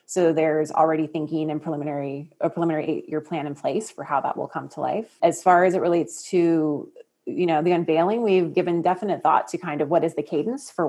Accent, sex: American, female